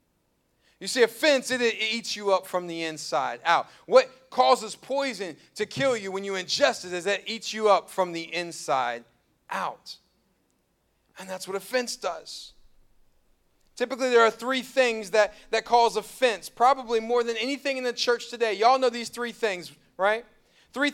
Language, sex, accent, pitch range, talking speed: English, male, American, 195-260 Hz, 170 wpm